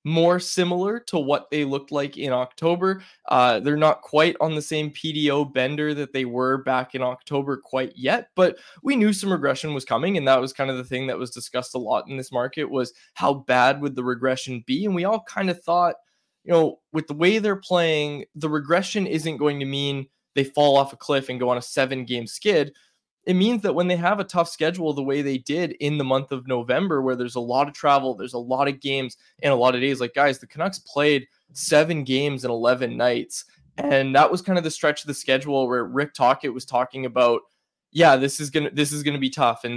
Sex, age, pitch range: male, 20-39, 130-155 Hz